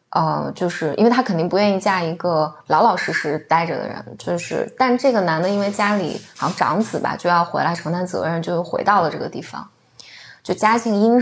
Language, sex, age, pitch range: Chinese, female, 20-39, 175-225 Hz